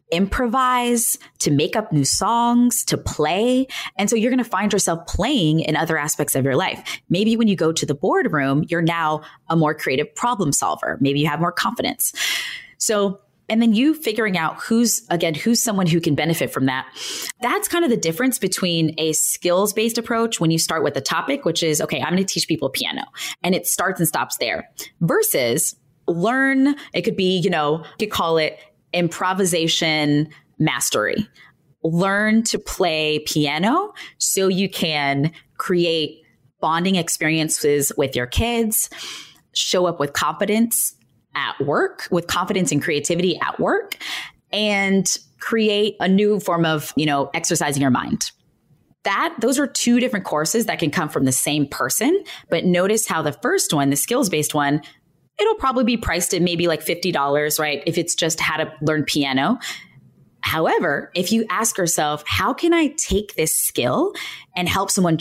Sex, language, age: female, English, 20-39